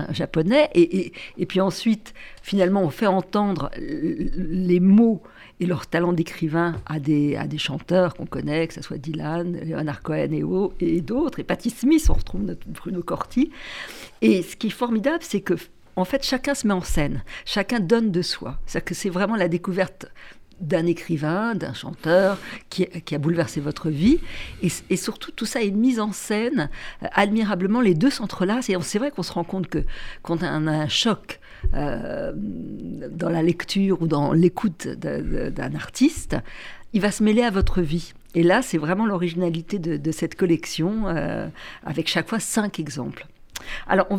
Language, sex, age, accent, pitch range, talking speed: French, female, 50-69, French, 165-215 Hz, 185 wpm